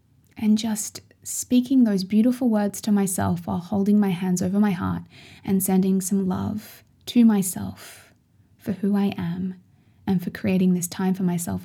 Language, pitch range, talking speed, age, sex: English, 195-225 Hz, 165 wpm, 20-39, female